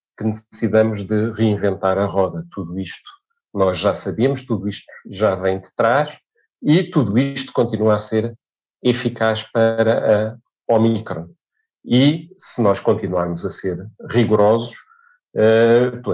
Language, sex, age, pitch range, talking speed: Portuguese, male, 40-59, 95-115 Hz, 125 wpm